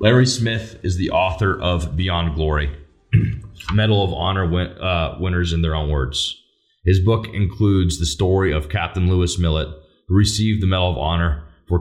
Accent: American